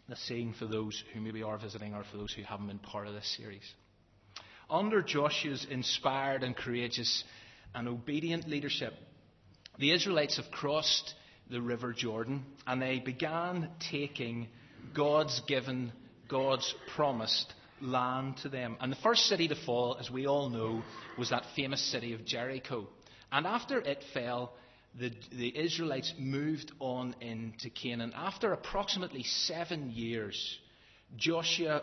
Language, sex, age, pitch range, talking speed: English, male, 30-49, 115-150 Hz, 145 wpm